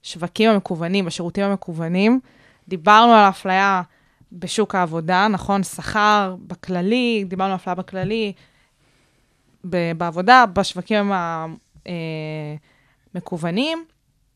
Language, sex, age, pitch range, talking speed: Hebrew, female, 20-39, 180-225 Hz, 85 wpm